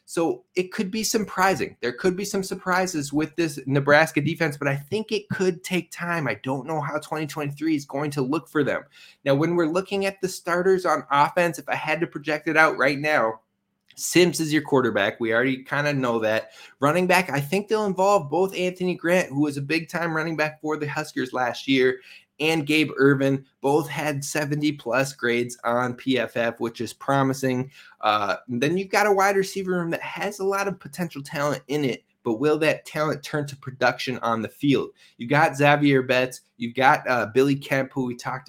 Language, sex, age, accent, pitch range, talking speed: English, male, 20-39, American, 130-165 Hz, 205 wpm